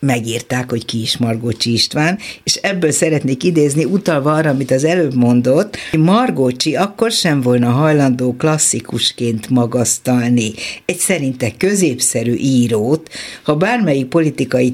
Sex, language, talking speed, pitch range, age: female, Hungarian, 125 wpm, 120-160 Hz, 60-79